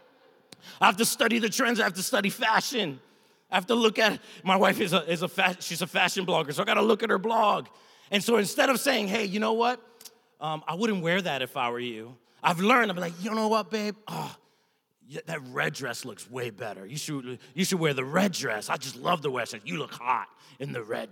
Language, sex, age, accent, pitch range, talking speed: English, male, 30-49, American, 175-230 Hz, 250 wpm